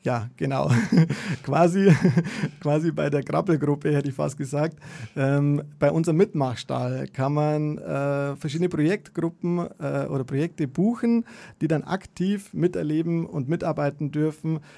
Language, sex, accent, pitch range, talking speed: German, male, German, 140-165 Hz, 125 wpm